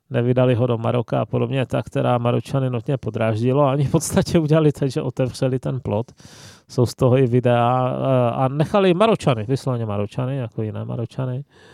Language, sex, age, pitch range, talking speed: Czech, male, 30-49, 115-130 Hz, 170 wpm